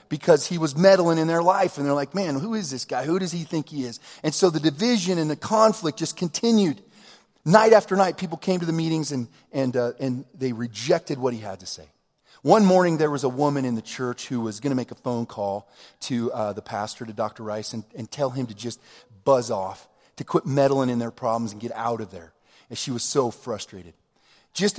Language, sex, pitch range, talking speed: English, male, 115-150 Hz, 235 wpm